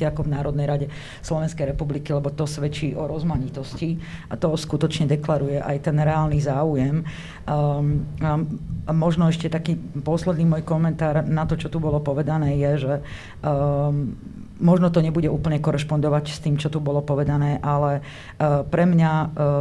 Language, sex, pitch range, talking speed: Slovak, female, 145-160 Hz, 155 wpm